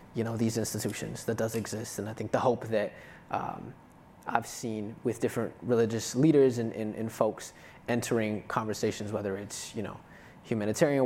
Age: 20-39